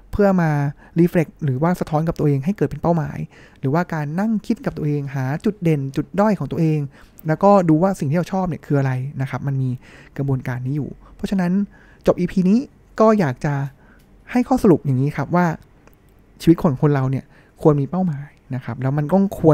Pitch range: 140-175 Hz